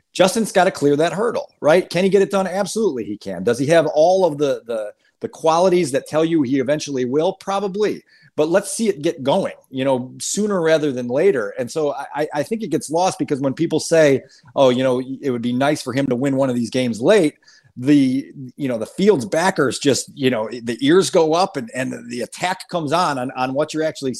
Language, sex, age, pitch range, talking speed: English, male, 30-49, 125-170 Hz, 235 wpm